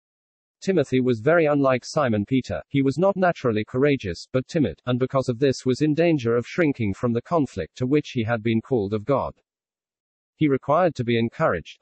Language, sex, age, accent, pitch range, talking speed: English, male, 40-59, British, 115-140 Hz, 195 wpm